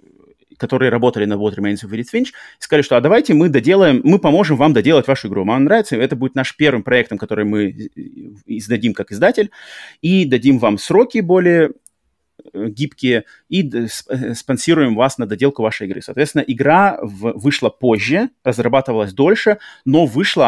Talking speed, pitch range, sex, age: 150 wpm, 110-155 Hz, male, 30-49